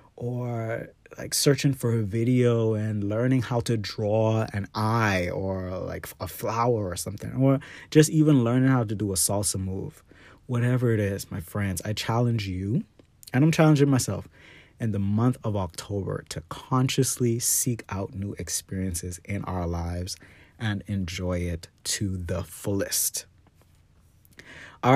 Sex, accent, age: male, American, 30-49